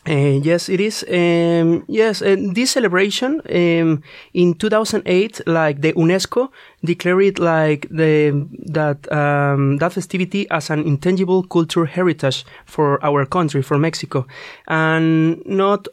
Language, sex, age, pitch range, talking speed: English, male, 30-49, 145-185 Hz, 120 wpm